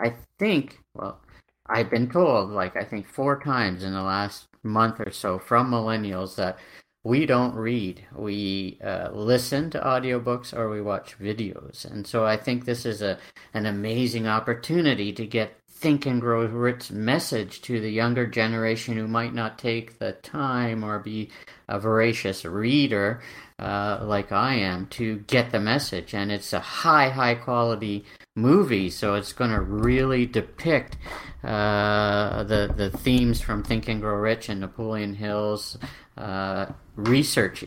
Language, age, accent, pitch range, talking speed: English, 50-69, American, 100-120 Hz, 160 wpm